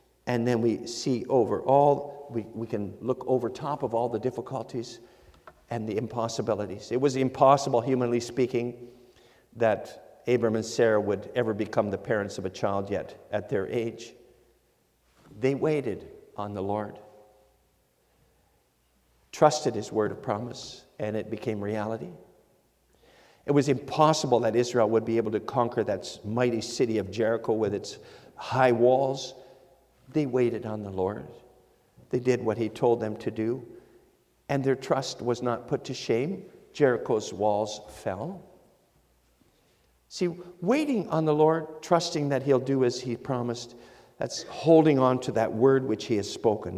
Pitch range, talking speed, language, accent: 110-145 Hz, 155 wpm, English, American